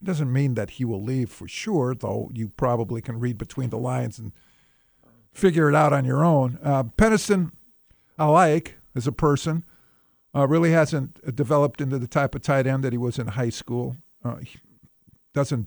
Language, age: English, 50-69